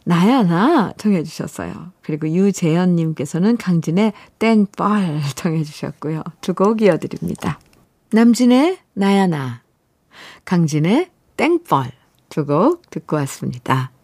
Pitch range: 160-225 Hz